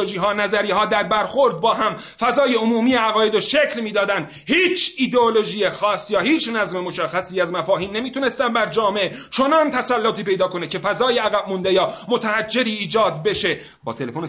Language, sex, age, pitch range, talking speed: Persian, male, 40-59, 190-240 Hz, 160 wpm